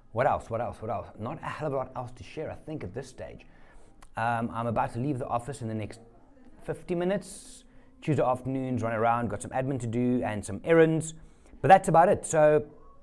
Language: English